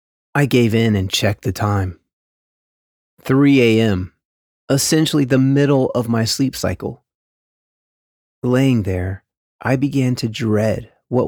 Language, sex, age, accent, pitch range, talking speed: English, male, 30-49, American, 100-135 Hz, 120 wpm